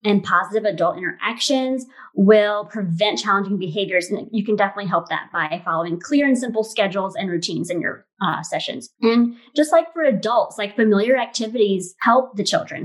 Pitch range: 200-260 Hz